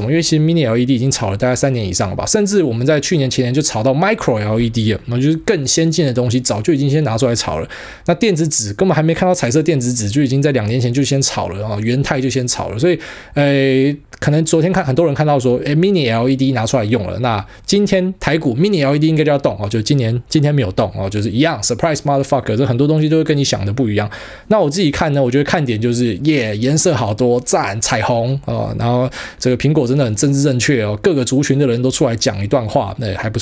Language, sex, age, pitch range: Chinese, male, 20-39, 115-150 Hz